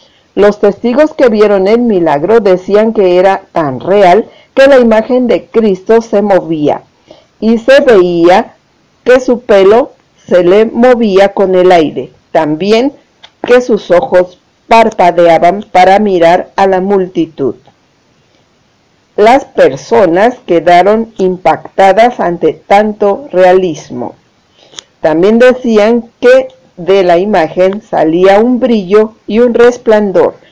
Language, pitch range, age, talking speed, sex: Spanish, 185-235 Hz, 50-69, 115 wpm, female